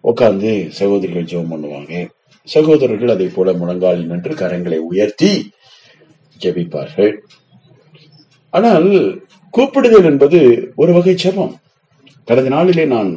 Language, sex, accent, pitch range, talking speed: Tamil, male, native, 95-160 Hz, 90 wpm